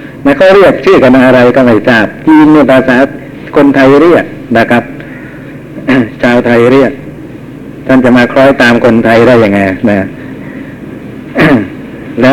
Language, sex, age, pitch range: Thai, male, 60-79, 125-150 Hz